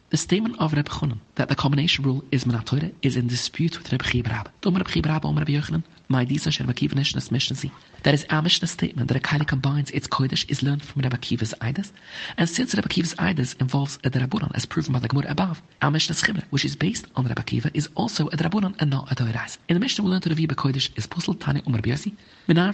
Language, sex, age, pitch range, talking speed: English, male, 30-49, 130-165 Hz, 205 wpm